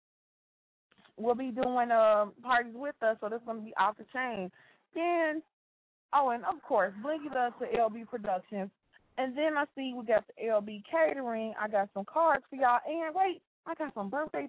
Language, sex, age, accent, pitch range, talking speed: English, female, 20-39, American, 230-300 Hz, 190 wpm